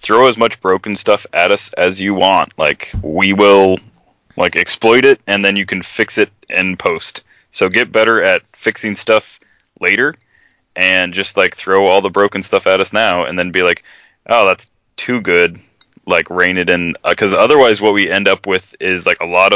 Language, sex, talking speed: English, male, 205 wpm